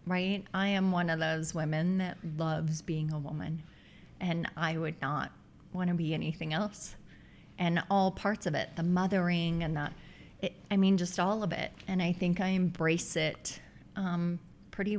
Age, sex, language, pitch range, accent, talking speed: 30-49, female, English, 170-220 Hz, American, 175 wpm